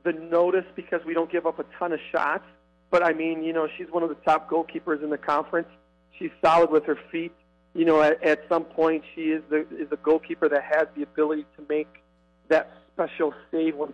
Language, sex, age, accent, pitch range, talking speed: English, male, 40-59, American, 145-160 Hz, 220 wpm